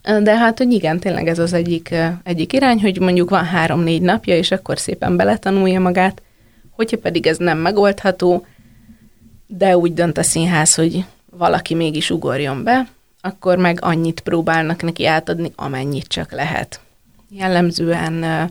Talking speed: 150 wpm